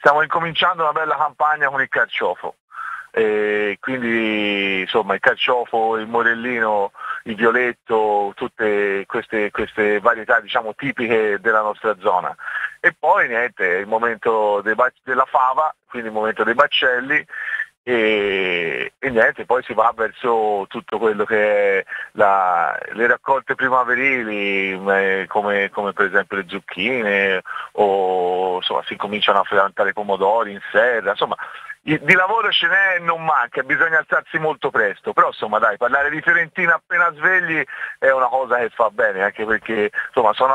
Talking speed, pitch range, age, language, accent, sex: 150 wpm, 105-145 Hz, 30-49, Italian, native, male